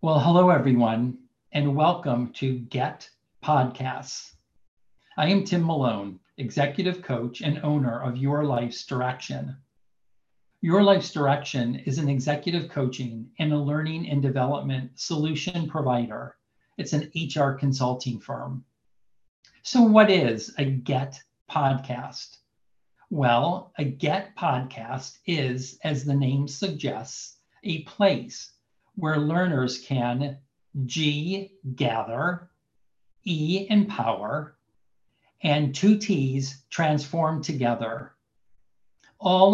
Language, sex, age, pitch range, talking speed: English, male, 50-69, 130-160 Hz, 105 wpm